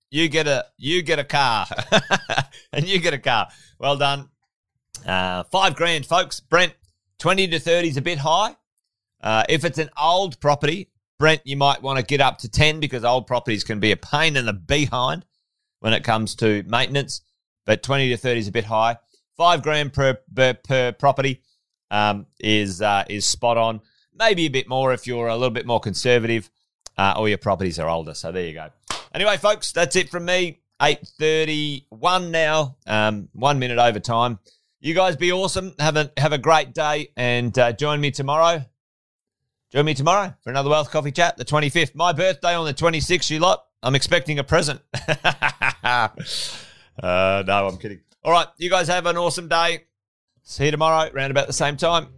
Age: 30-49